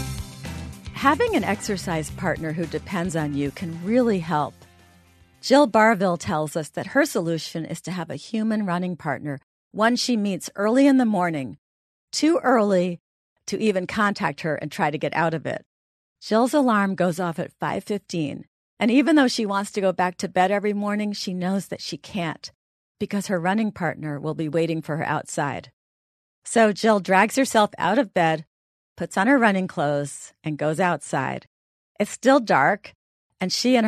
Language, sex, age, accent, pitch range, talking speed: English, female, 40-59, American, 155-210 Hz, 175 wpm